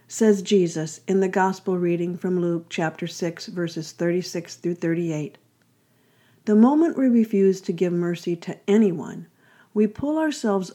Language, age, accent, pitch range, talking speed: English, 50-69, American, 165-210 Hz, 145 wpm